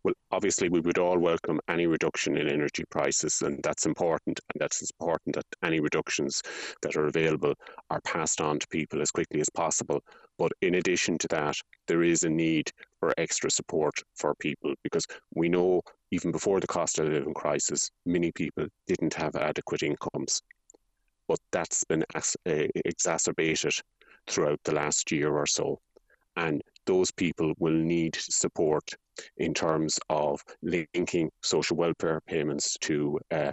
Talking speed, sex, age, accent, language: 155 wpm, male, 30-49, Irish, English